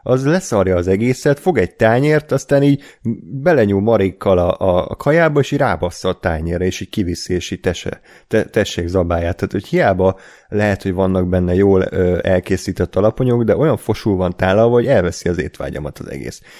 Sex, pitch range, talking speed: male, 90-125 Hz, 170 wpm